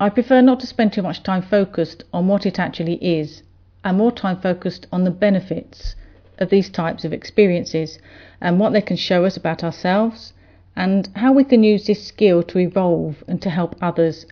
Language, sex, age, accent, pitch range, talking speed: English, female, 40-59, British, 160-195 Hz, 195 wpm